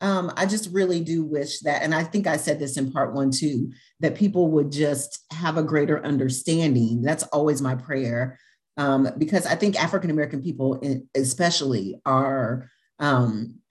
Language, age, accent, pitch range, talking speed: English, 40-59, American, 140-190 Hz, 165 wpm